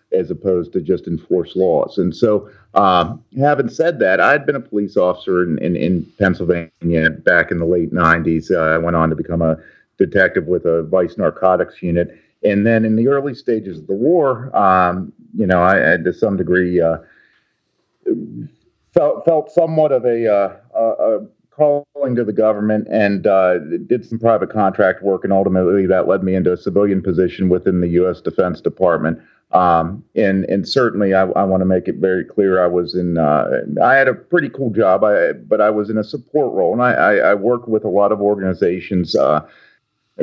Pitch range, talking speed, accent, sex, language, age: 85-105 Hz, 195 wpm, American, male, English, 40-59